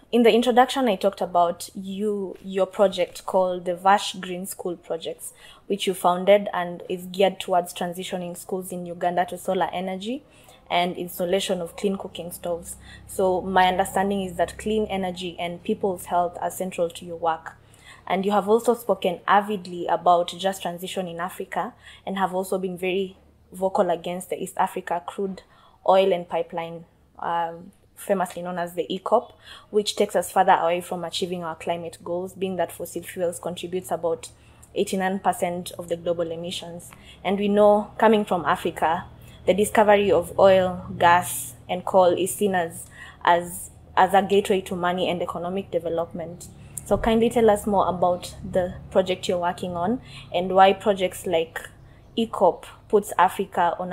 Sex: female